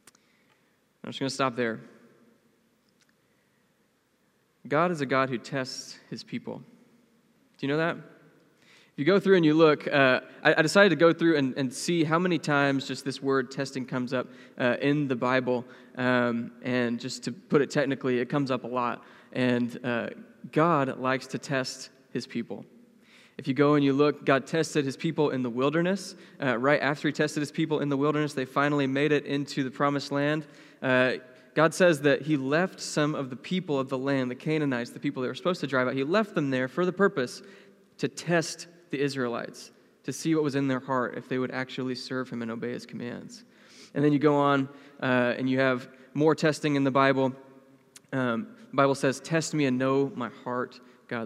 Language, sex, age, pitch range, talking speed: English, male, 20-39, 130-155 Hz, 205 wpm